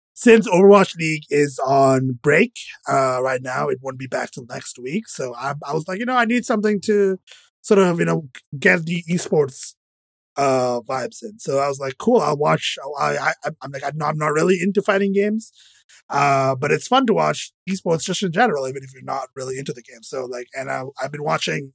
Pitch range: 130-185 Hz